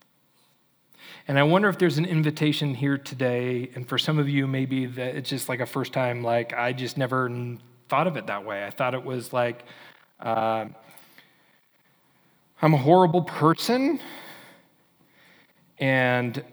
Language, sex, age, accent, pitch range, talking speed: English, male, 40-59, American, 125-145 Hz, 150 wpm